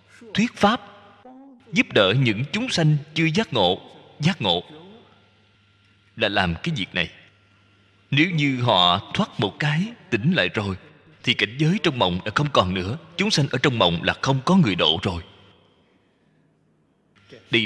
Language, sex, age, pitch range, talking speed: Vietnamese, male, 20-39, 100-155 Hz, 160 wpm